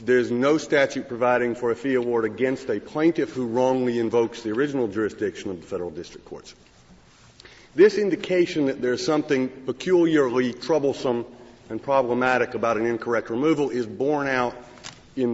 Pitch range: 115-145 Hz